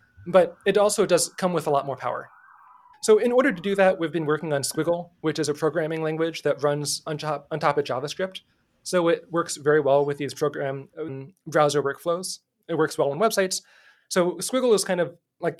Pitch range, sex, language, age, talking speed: 150-190 Hz, male, English, 20-39, 205 wpm